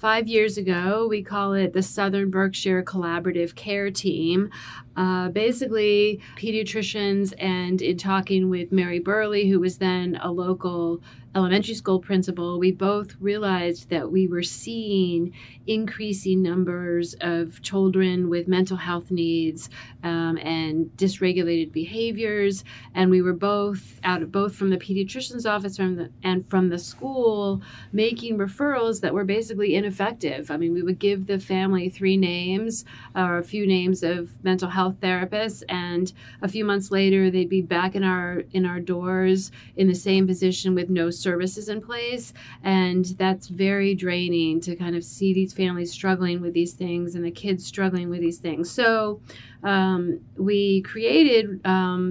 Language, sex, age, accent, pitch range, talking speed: English, female, 40-59, American, 175-200 Hz, 160 wpm